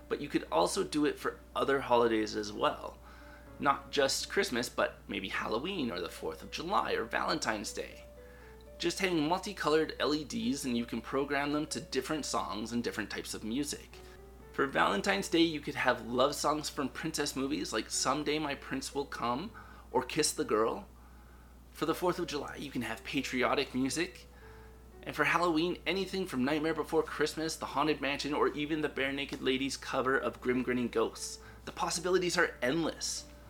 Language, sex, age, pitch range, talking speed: English, male, 20-39, 110-160 Hz, 175 wpm